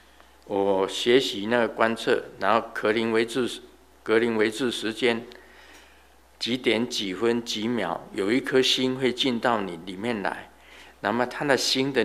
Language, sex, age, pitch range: Chinese, male, 50-69, 110-165 Hz